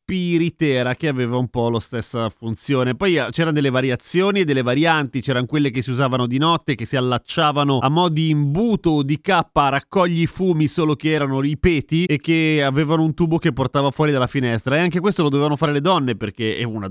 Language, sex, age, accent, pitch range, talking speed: Italian, male, 30-49, native, 125-170 Hz, 215 wpm